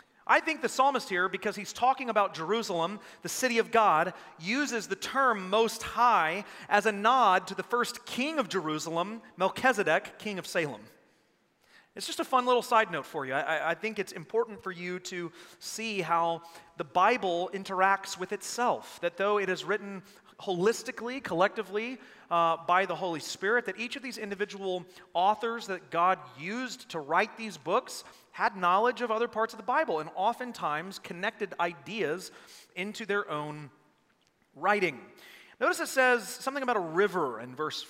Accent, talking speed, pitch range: American, 170 wpm, 170-225 Hz